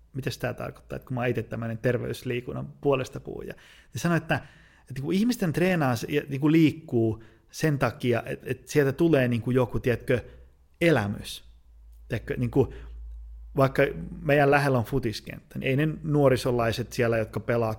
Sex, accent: male, native